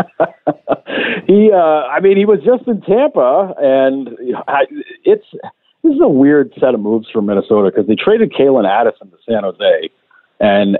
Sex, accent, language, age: male, American, English, 50-69